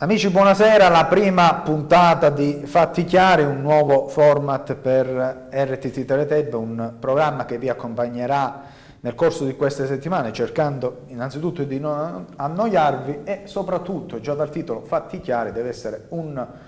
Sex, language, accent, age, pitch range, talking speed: male, Italian, native, 30-49, 125-165 Hz, 140 wpm